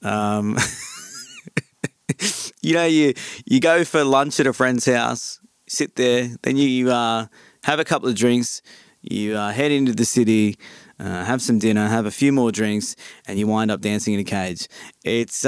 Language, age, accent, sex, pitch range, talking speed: English, 20-39, Australian, male, 120-150 Hz, 180 wpm